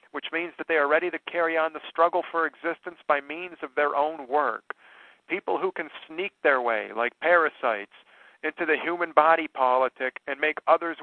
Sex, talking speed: male, 190 wpm